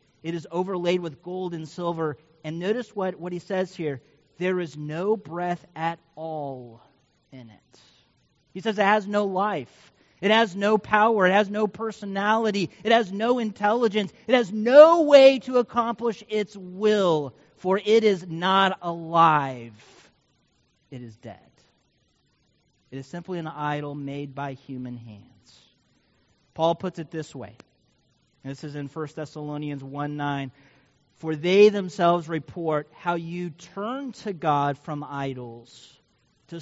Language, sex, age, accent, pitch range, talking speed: English, male, 40-59, American, 150-200 Hz, 145 wpm